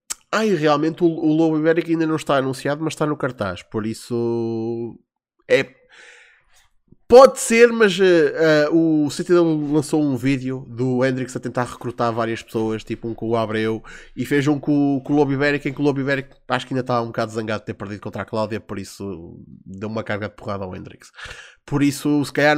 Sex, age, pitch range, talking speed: male, 20-39, 125-170 Hz, 190 wpm